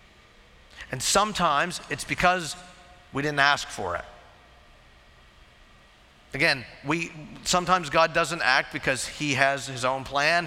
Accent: American